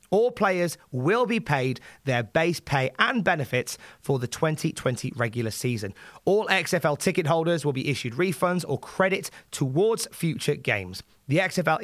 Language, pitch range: English, 115-160 Hz